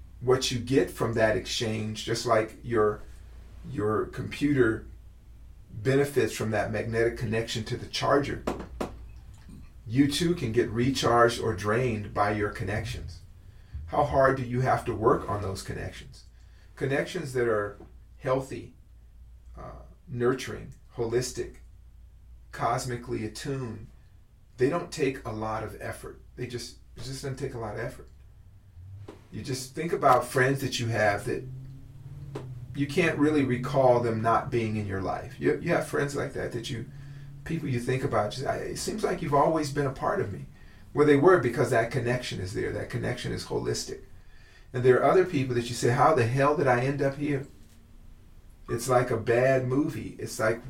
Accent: American